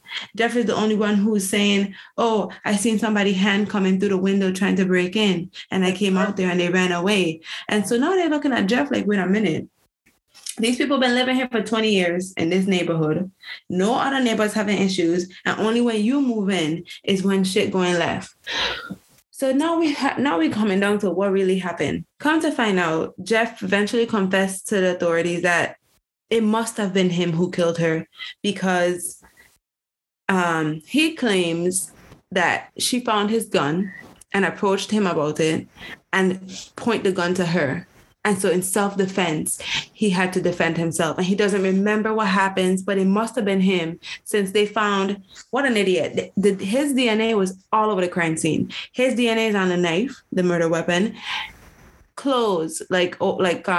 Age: 20-39